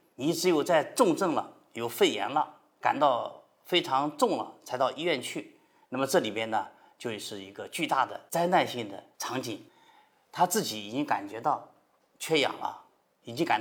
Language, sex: Chinese, male